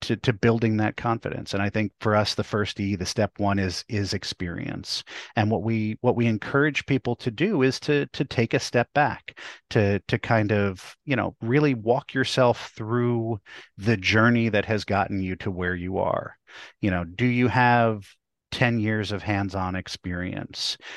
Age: 40-59